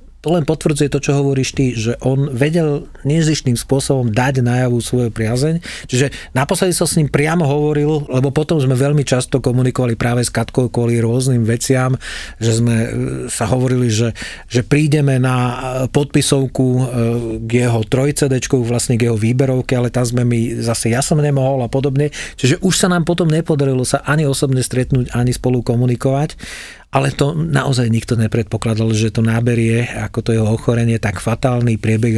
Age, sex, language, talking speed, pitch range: 40-59, male, Slovak, 170 wpm, 115-135 Hz